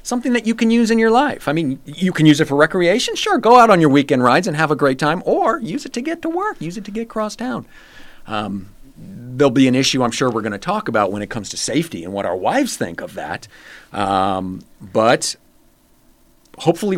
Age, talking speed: 40-59, 240 wpm